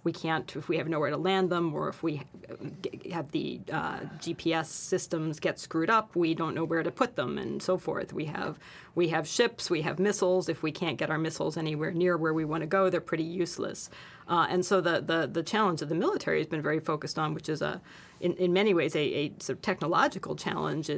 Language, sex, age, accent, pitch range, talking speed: English, female, 40-59, American, 160-185 Hz, 235 wpm